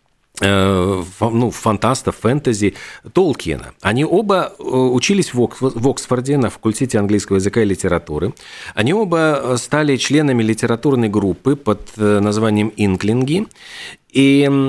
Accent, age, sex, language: native, 40-59, male, Russian